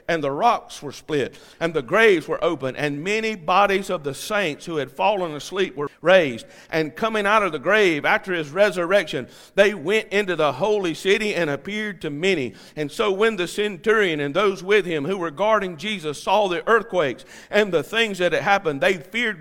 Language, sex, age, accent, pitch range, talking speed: English, male, 50-69, American, 155-215 Hz, 200 wpm